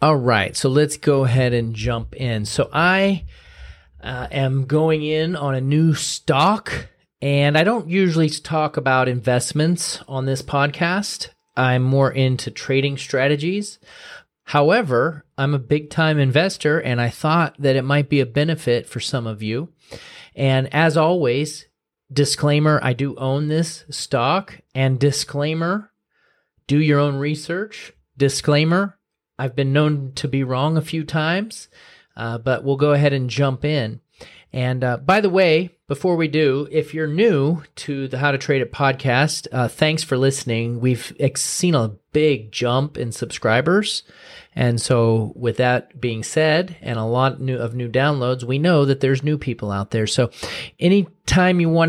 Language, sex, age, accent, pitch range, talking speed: English, male, 30-49, American, 130-160 Hz, 160 wpm